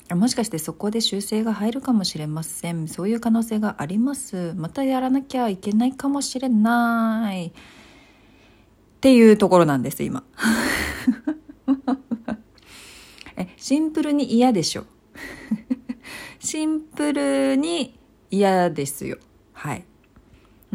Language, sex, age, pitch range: Japanese, female, 40-59, 160-250 Hz